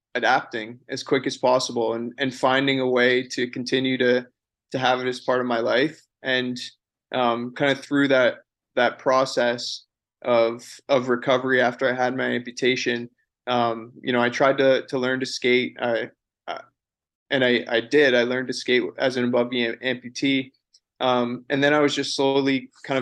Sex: male